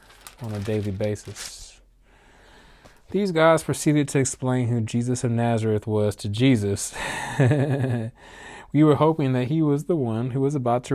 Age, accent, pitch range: 20-39, American, 110-135 Hz